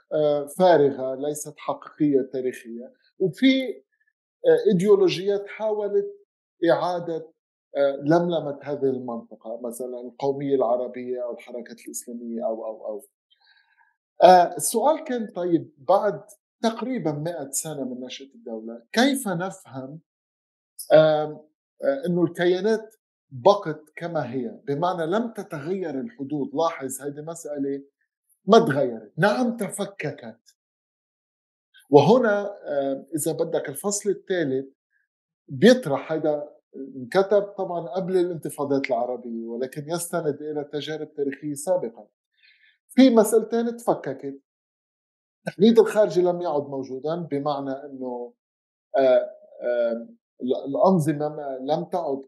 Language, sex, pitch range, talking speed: Arabic, male, 135-200 Hz, 90 wpm